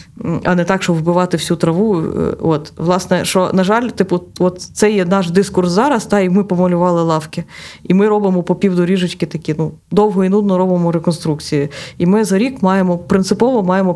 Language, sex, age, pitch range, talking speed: Ukrainian, female, 20-39, 170-195 Hz, 185 wpm